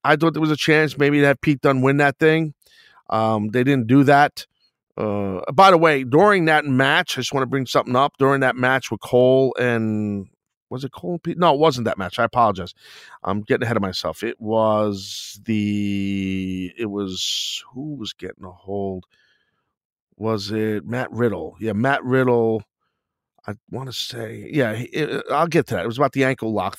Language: English